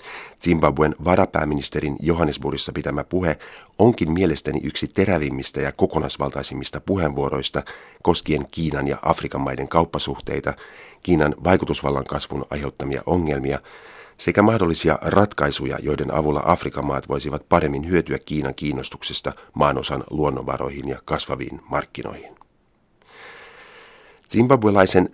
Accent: native